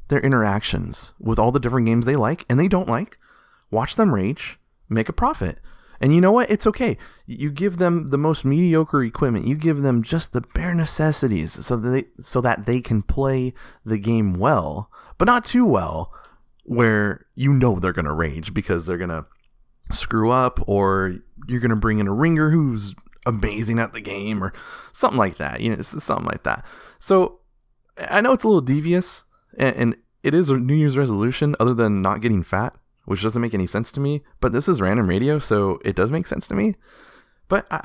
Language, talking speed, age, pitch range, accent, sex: English, 205 wpm, 30-49, 105-165 Hz, American, male